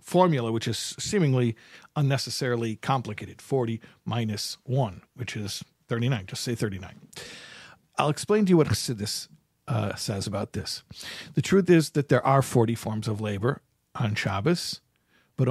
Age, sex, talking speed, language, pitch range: 50-69, male, 145 wpm, English, 115-155 Hz